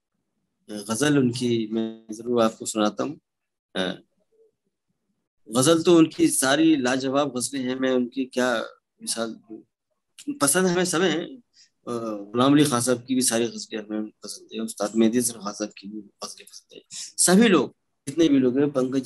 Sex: male